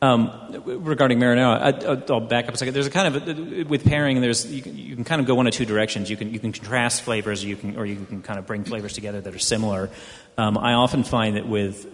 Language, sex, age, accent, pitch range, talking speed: English, male, 30-49, American, 105-125 Hz, 265 wpm